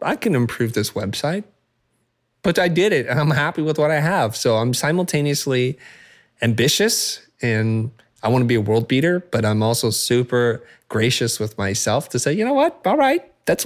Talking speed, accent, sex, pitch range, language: 190 wpm, American, male, 115-155 Hz, English